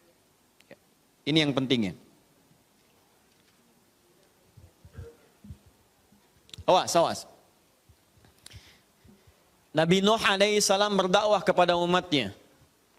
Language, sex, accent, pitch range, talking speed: Indonesian, male, native, 165-210 Hz, 50 wpm